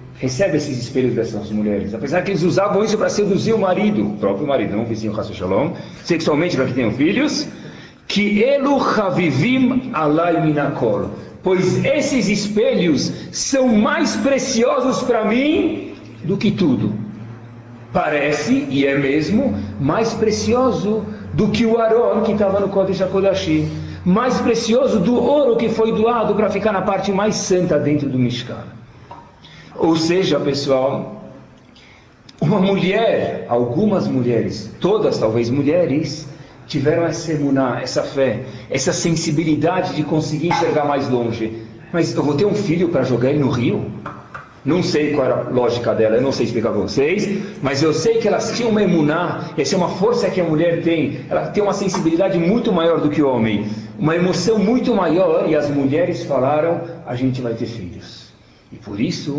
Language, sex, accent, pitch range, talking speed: Portuguese, male, Brazilian, 135-205 Hz, 160 wpm